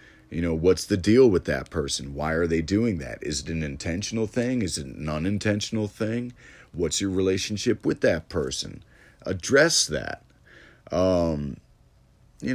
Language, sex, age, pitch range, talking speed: English, male, 40-59, 80-120 Hz, 160 wpm